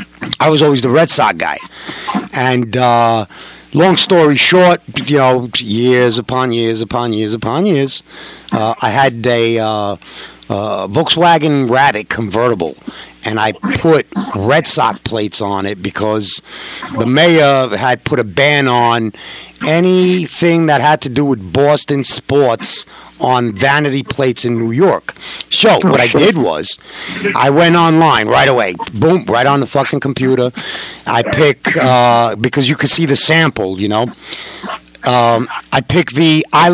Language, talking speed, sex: English, 150 wpm, male